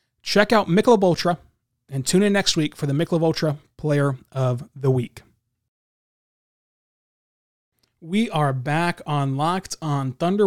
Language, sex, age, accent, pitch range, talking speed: English, male, 20-39, American, 145-185 Hz, 140 wpm